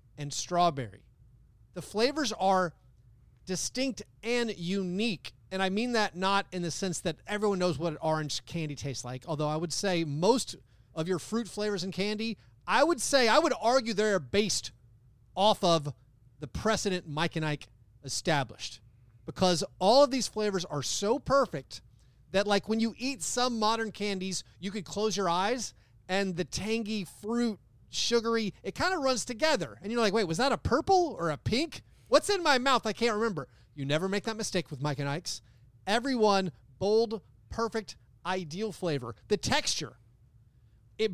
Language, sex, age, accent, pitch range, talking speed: English, male, 30-49, American, 125-215 Hz, 170 wpm